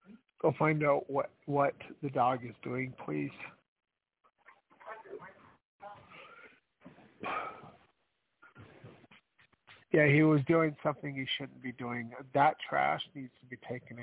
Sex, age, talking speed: male, 50-69, 105 wpm